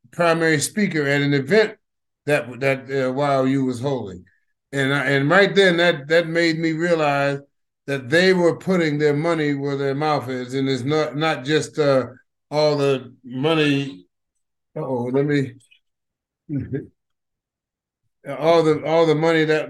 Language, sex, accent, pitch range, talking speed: English, male, American, 140-160 Hz, 150 wpm